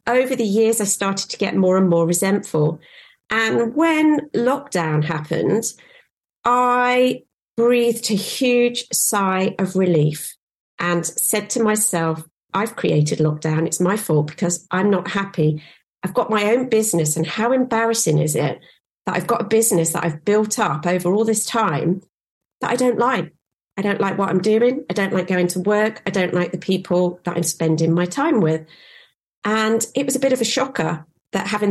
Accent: British